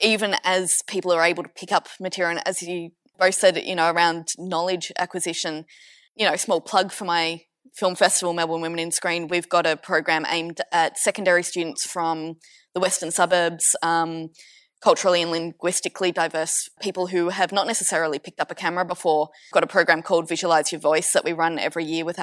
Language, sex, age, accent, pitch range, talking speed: English, female, 20-39, Australian, 165-195 Hz, 195 wpm